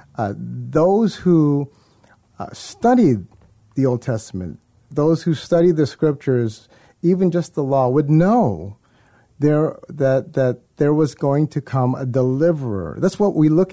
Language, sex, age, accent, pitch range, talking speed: English, male, 50-69, American, 115-155 Hz, 145 wpm